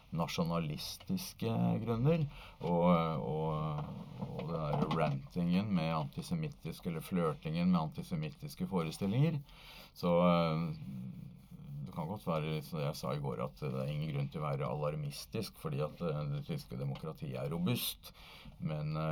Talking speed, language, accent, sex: 125 wpm, English, Norwegian, male